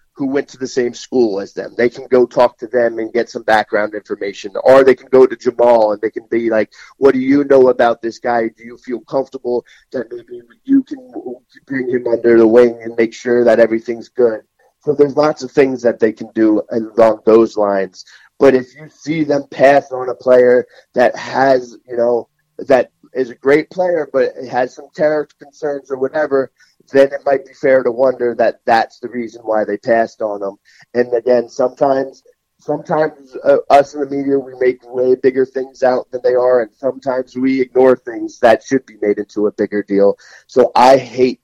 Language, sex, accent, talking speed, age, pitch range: English, male, American, 210 wpm, 30-49, 115-135 Hz